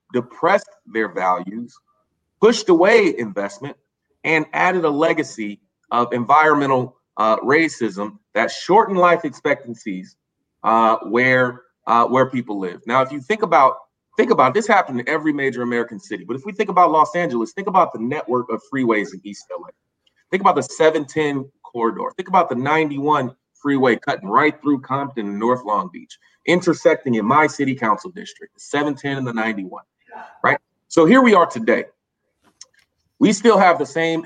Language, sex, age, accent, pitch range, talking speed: English, male, 30-49, American, 115-165 Hz, 165 wpm